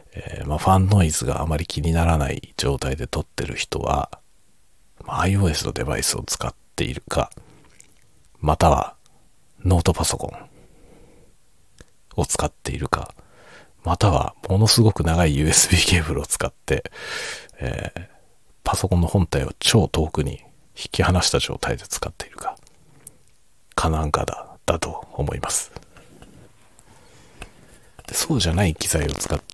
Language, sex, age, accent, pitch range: Japanese, male, 40-59, native, 80-110 Hz